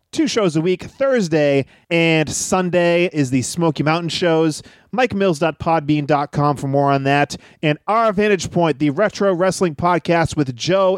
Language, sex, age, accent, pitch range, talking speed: English, male, 30-49, American, 150-185 Hz, 150 wpm